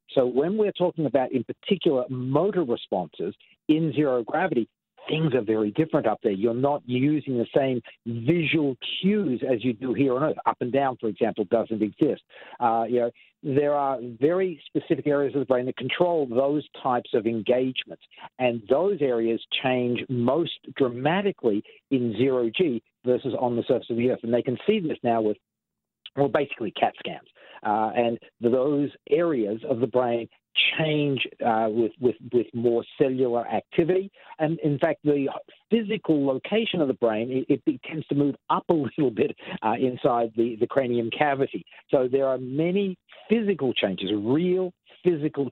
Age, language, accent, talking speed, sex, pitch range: 50-69, English, American, 170 wpm, male, 120-155 Hz